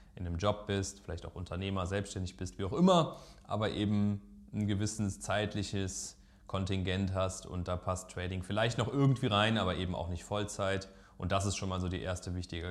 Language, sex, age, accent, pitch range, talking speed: German, male, 20-39, German, 90-110 Hz, 195 wpm